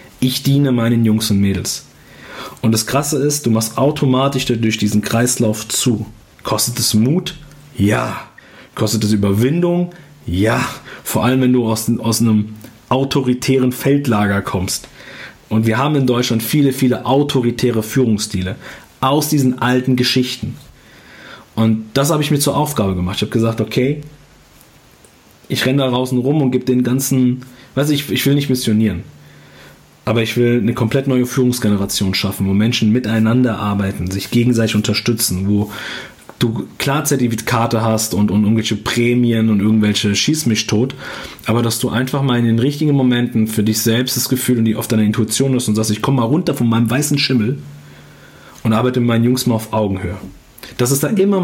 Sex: male